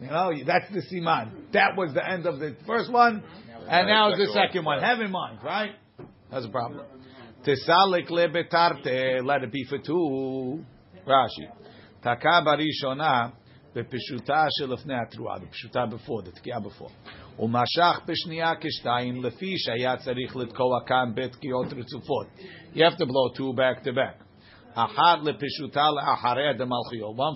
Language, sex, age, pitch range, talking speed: English, male, 50-69, 125-155 Hz, 135 wpm